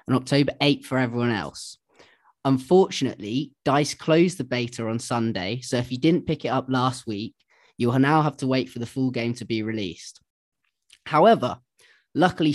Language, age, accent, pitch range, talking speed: English, 20-39, British, 115-145 Hz, 170 wpm